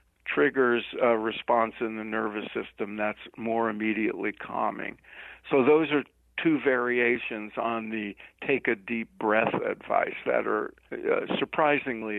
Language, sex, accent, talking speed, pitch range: English, male, American, 130 wpm, 110-135 Hz